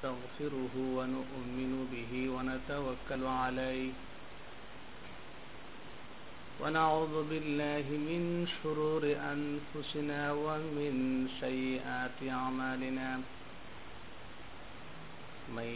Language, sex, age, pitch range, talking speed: Bengali, male, 50-69, 130-155 Hz, 55 wpm